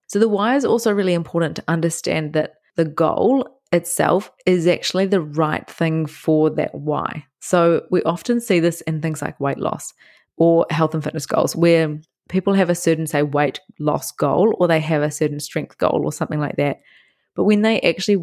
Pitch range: 155-180 Hz